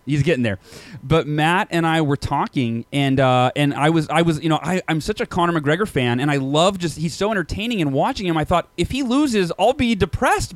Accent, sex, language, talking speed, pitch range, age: American, male, English, 245 wpm, 135-185 Hz, 30-49